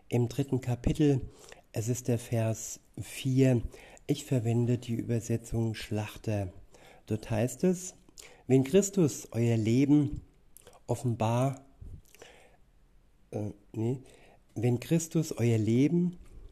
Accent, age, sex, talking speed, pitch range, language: German, 50-69, male, 100 wpm, 115-135 Hz, German